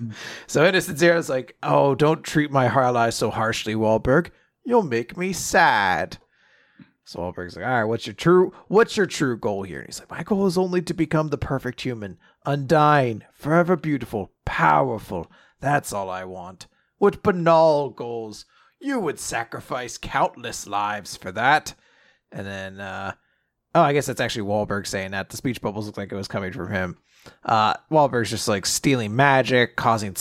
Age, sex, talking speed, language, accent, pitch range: 30-49, male, 175 wpm, English, American, 110-160 Hz